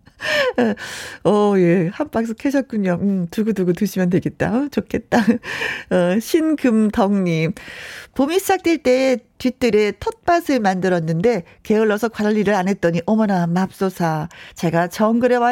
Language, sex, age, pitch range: Korean, female, 40-59, 195-280 Hz